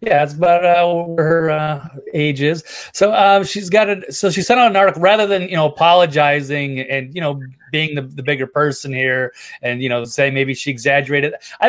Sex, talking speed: male, 210 wpm